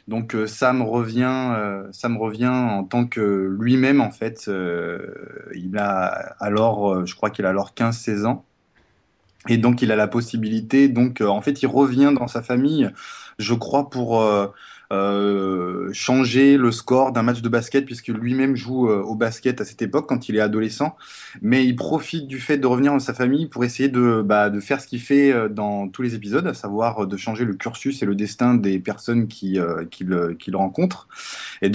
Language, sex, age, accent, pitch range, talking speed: French, male, 20-39, French, 105-130 Hz, 205 wpm